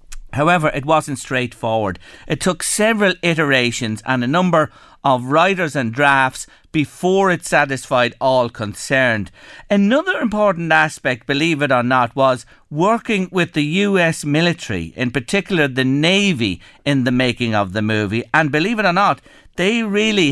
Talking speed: 150 wpm